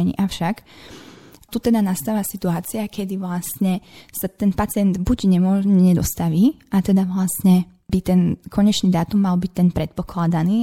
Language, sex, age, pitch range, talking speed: Slovak, female, 20-39, 170-195 Hz, 135 wpm